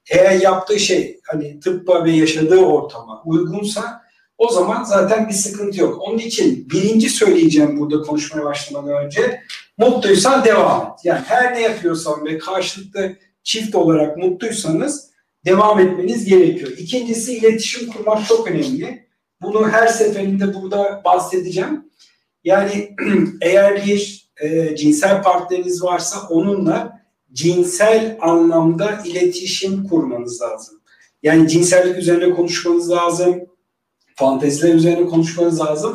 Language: Turkish